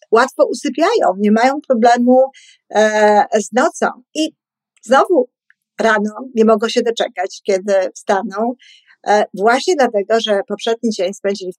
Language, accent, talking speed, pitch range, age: Polish, native, 130 wpm, 200-255 Hz, 50-69